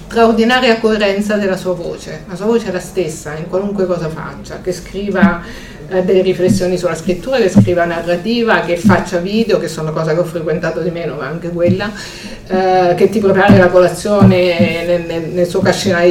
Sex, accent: female, native